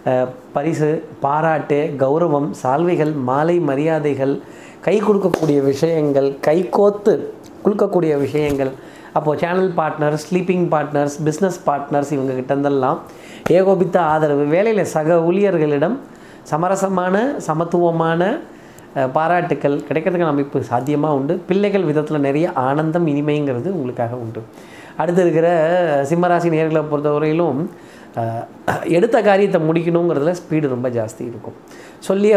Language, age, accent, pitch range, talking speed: Tamil, 30-49, native, 140-180 Hz, 100 wpm